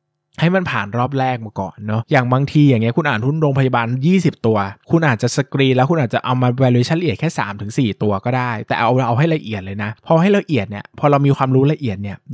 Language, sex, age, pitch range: Thai, male, 20-39, 115-150 Hz